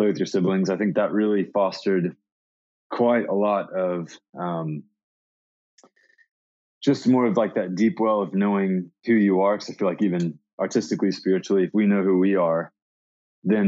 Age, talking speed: 20-39, 170 wpm